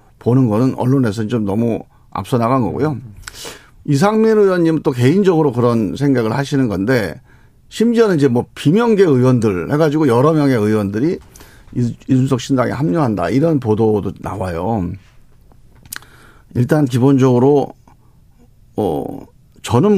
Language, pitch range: Korean, 110-140 Hz